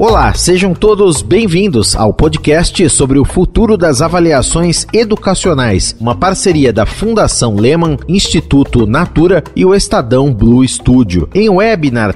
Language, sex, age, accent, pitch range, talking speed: Portuguese, male, 40-59, Brazilian, 125-185 Hz, 130 wpm